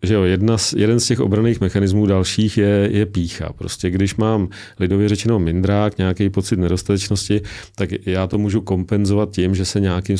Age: 40-59